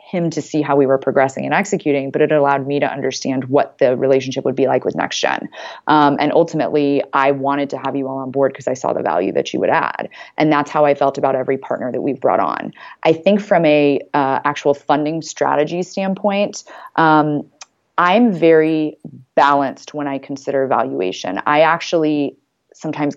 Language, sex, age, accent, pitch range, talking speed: English, female, 30-49, American, 135-155 Hz, 195 wpm